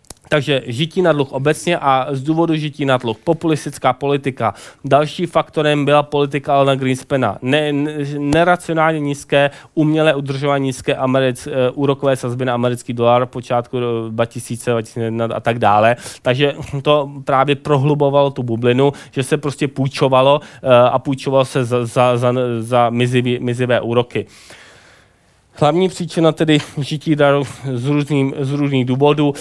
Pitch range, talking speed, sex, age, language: 125-145 Hz, 145 wpm, male, 20-39, Czech